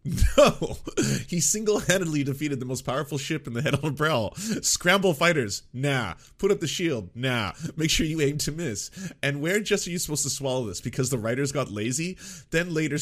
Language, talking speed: English, 205 wpm